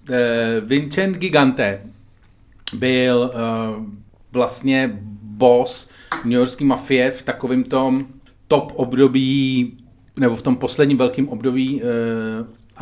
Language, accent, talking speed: Czech, native, 100 wpm